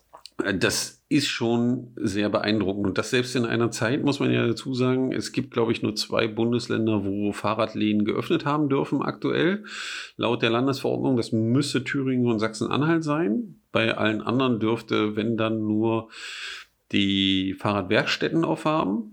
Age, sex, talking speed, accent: 40-59, male, 150 wpm, German